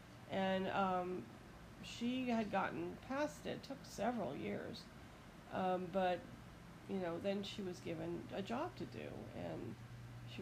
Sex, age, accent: female, 40-59, American